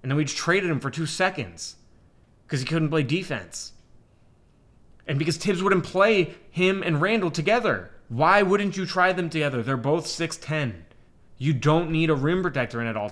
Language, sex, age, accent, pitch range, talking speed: English, male, 20-39, American, 115-160 Hz, 190 wpm